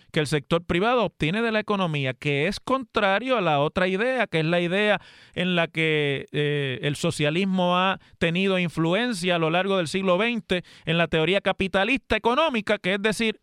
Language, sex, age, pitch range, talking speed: Spanish, male, 30-49, 165-220 Hz, 190 wpm